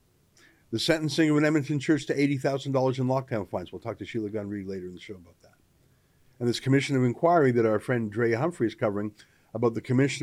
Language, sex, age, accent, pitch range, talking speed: English, male, 50-69, American, 120-155 Hz, 215 wpm